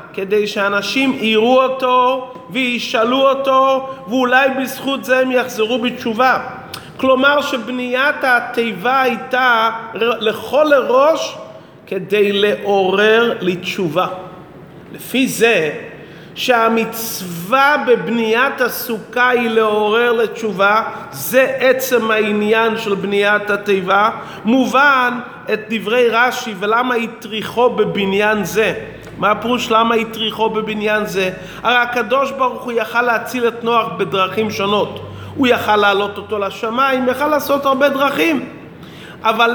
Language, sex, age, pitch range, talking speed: Hebrew, male, 40-59, 215-255 Hz, 105 wpm